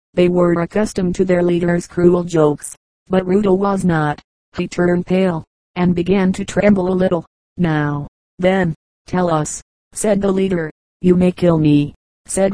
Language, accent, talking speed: English, American, 160 wpm